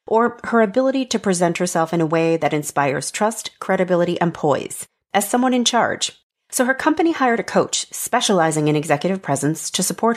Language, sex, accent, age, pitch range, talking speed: English, female, American, 40-59, 165-220 Hz, 185 wpm